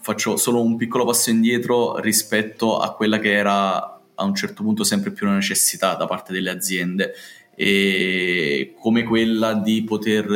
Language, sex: Italian, male